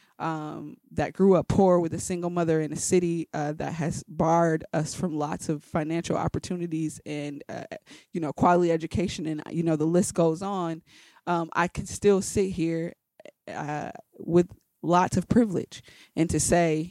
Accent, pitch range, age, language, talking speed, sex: American, 155-185 Hz, 20-39, English, 175 wpm, female